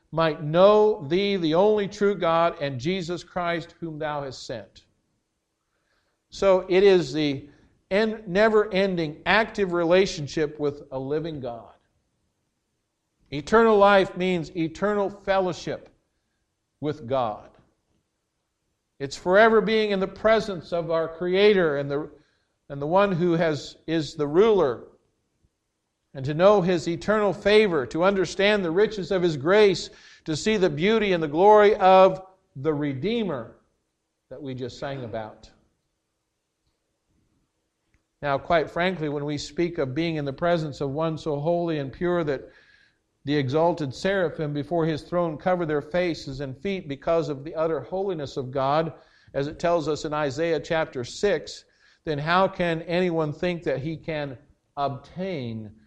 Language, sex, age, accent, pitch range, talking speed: English, male, 50-69, American, 145-190 Hz, 145 wpm